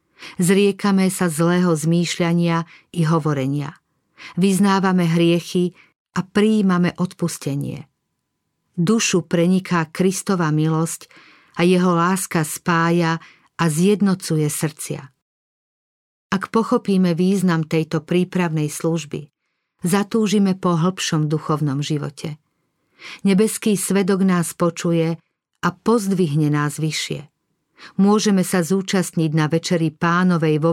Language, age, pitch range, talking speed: Slovak, 50-69, 160-185 Hz, 95 wpm